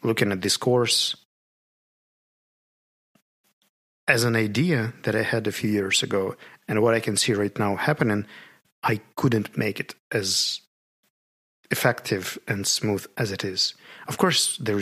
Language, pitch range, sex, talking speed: Russian, 100-120 Hz, male, 145 wpm